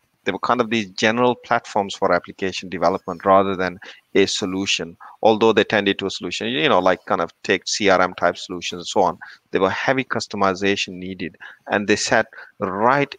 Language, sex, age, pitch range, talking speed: English, male, 30-49, 95-115 Hz, 185 wpm